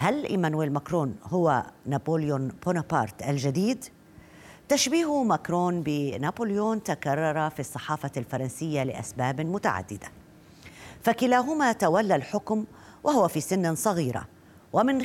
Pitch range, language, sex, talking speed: 140-215 Hz, Arabic, female, 95 wpm